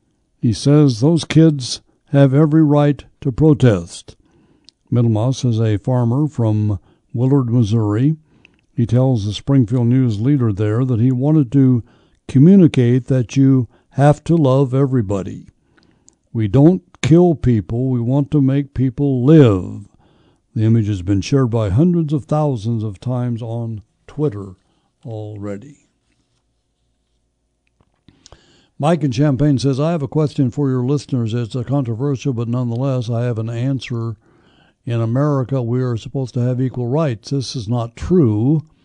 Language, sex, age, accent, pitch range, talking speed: English, male, 60-79, American, 115-145 Hz, 140 wpm